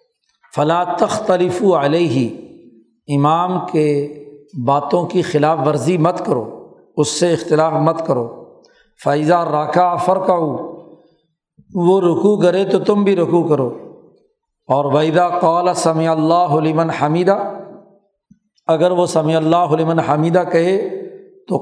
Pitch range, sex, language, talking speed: 155-185 Hz, male, Urdu, 115 wpm